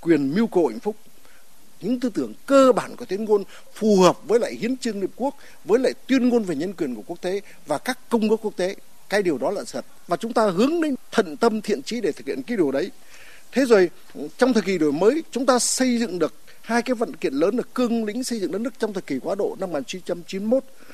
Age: 60-79